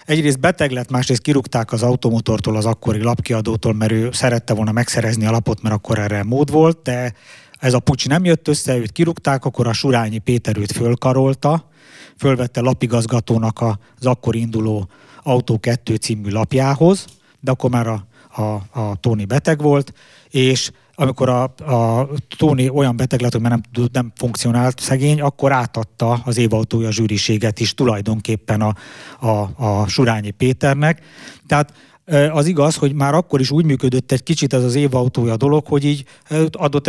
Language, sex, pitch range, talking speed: English, male, 115-145 Hz, 160 wpm